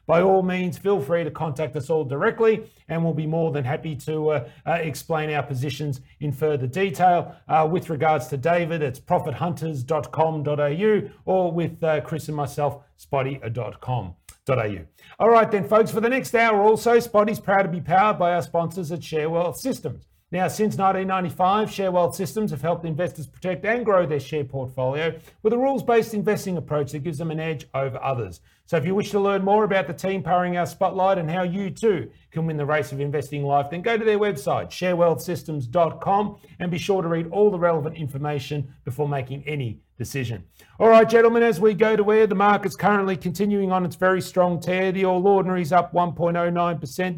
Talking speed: 190 wpm